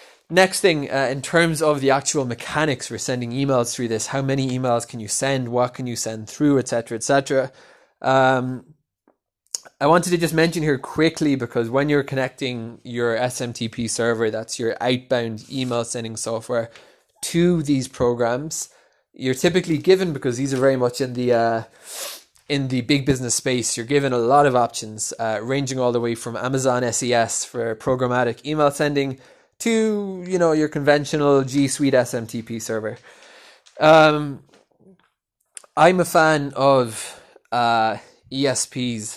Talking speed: 160 wpm